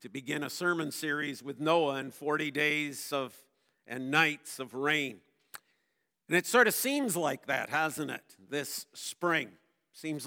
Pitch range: 145-200 Hz